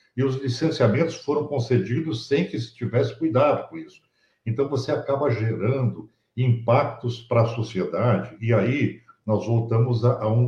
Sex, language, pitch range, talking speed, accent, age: male, Portuguese, 100-130 Hz, 155 wpm, Brazilian, 60-79